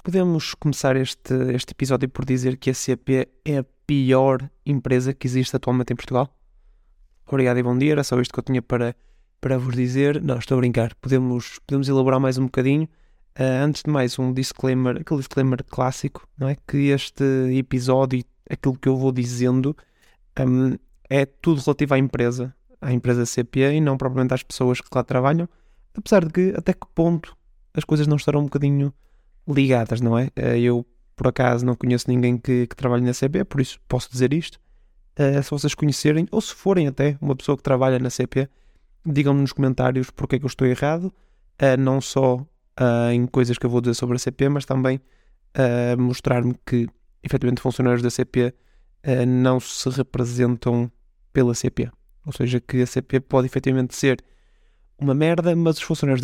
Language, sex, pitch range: Portuguese, male, 125-140 Hz